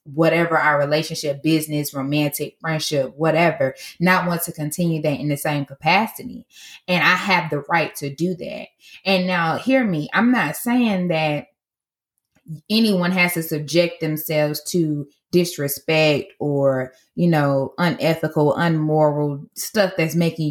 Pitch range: 155-205 Hz